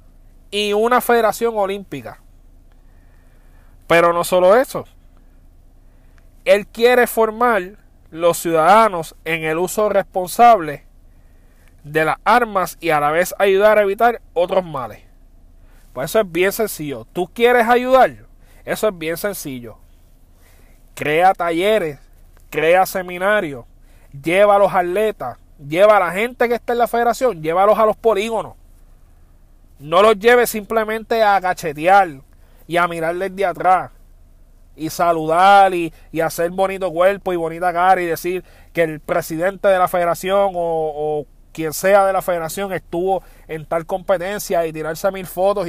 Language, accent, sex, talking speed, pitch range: Spanish, American, male, 140 wpm, 135-200 Hz